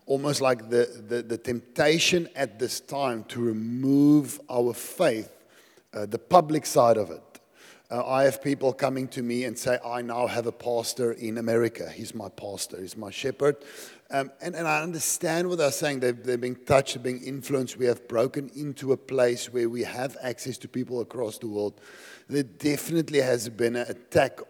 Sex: male